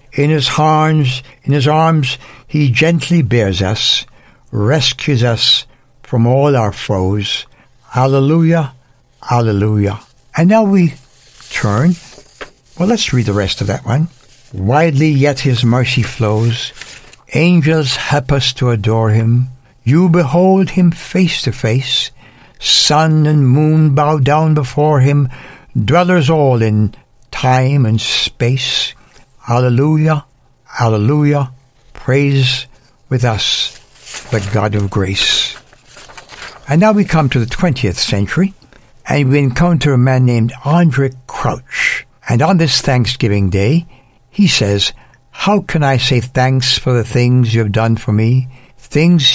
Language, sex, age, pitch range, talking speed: English, male, 60-79, 120-150 Hz, 130 wpm